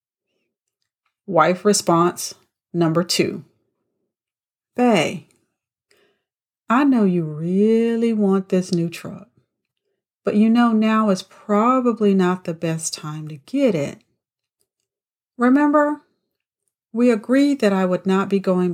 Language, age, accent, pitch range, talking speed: English, 40-59, American, 165-215 Hz, 110 wpm